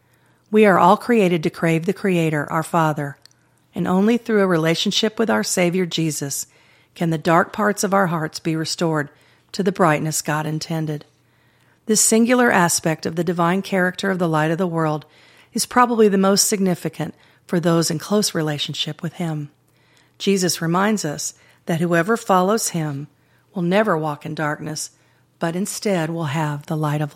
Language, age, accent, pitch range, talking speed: English, 50-69, American, 150-195 Hz, 170 wpm